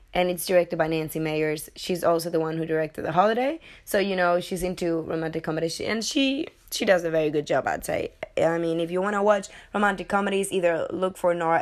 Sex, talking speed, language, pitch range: female, 230 wpm, English, 160-195 Hz